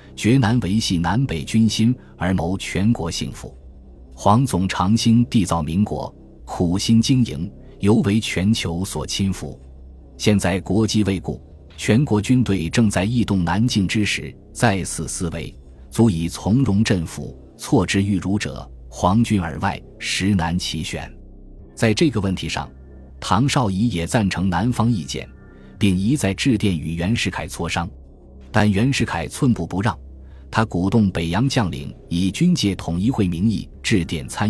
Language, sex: Chinese, male